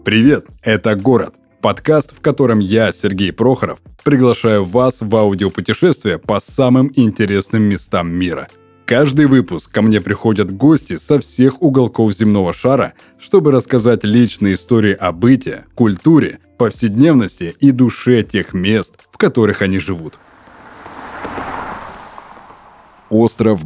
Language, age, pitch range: Russian, 20-39, 95-120 Hz